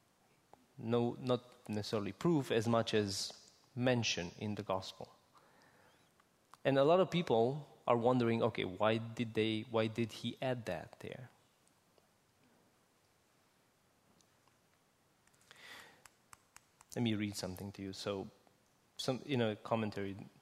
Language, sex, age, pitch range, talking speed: English, male, 30-49, 105-145 Hz, 115 wpm